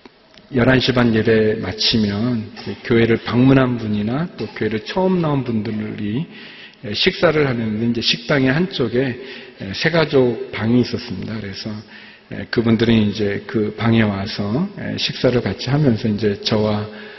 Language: Korean